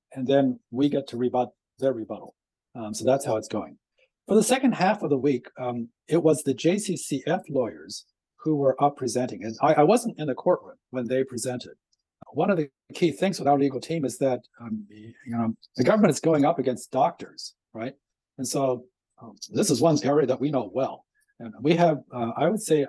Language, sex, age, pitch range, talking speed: English, male, 50-69, 120-150 Hz, 210 wpm